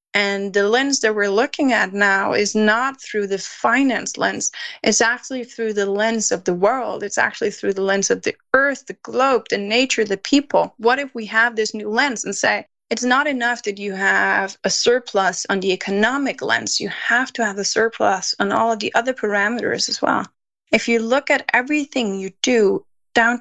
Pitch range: 205-255 Hz